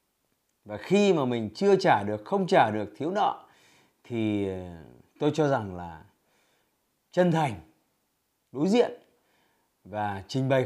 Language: Vietnamese